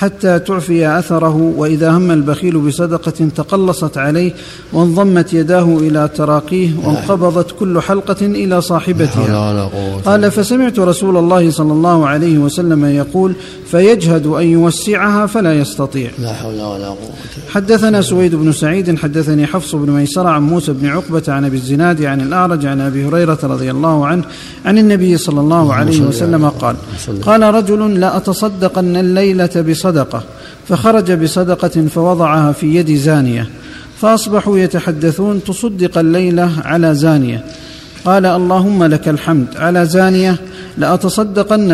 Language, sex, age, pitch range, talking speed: Arabic, male, 50-69, 150-185 Hz, 125 wpm